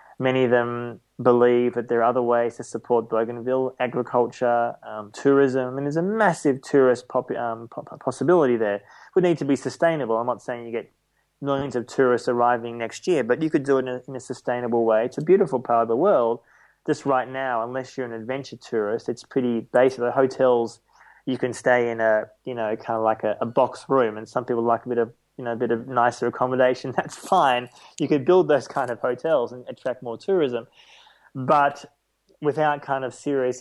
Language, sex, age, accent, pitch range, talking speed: English, male, 20-39, Australian, 120-140 Hz, 215 wpm